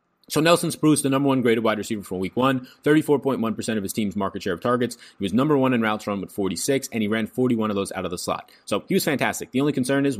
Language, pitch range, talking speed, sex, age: English, 100-135 Hz, 275 wpm, male, 20-39